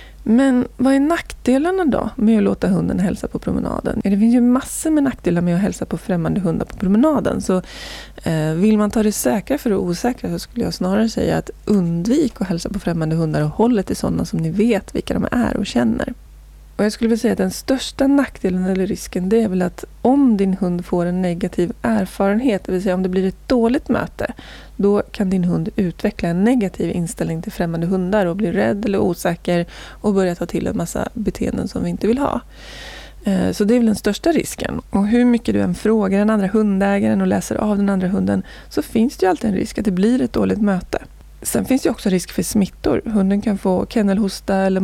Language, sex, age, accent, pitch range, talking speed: Swedish, female, 20-39, native, 185-235 Hz, 220 wpm